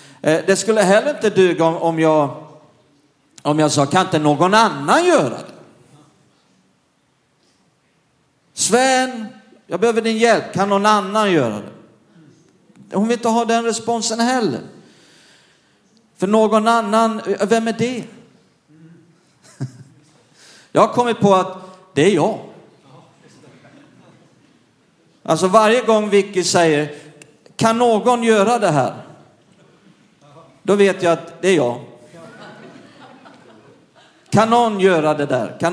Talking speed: 120 wpm